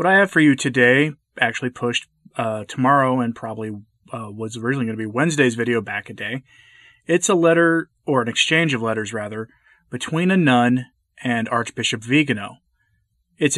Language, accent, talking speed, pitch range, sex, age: English, American, 170 wpm, 115-150 Hz, male, 30-49